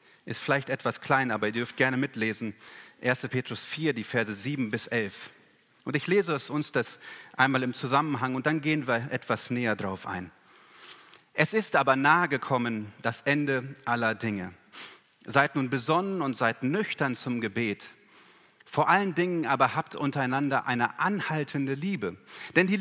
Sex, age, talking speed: male, 30-49, 165 wpm